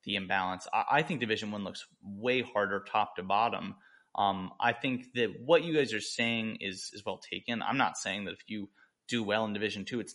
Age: 30-49